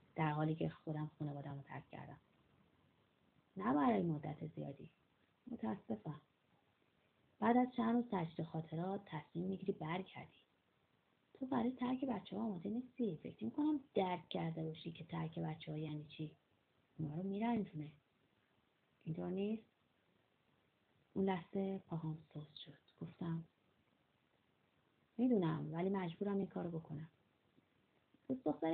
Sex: female